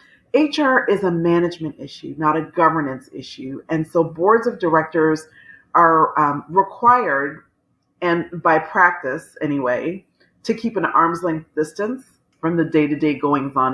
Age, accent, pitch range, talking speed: 40-59, American, 145-175 Hz, 140 wpm